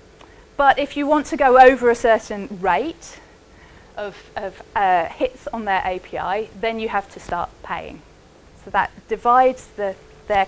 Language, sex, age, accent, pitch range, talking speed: English, female, 30-49, British, 190-265 Hz, 155 wpm